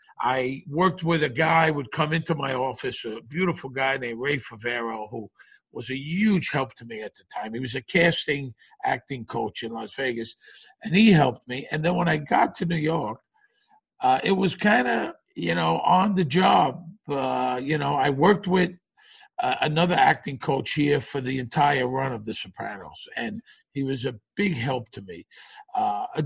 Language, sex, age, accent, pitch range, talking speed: English, male, 50-69, American, 130-170 Hz, 195 wpm